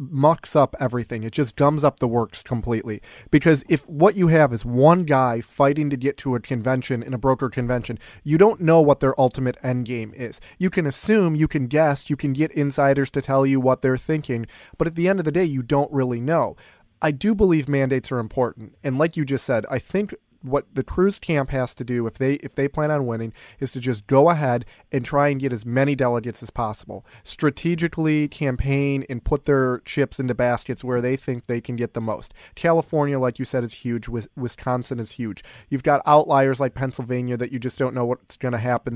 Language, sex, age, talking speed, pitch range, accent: English, male, 30-49, 220 wpm, 125-150 Hz, American